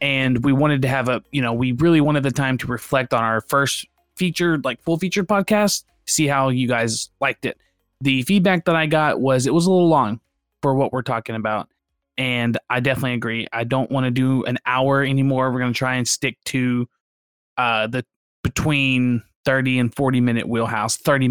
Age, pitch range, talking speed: 20-39, 120-155 Hz, 205 wpm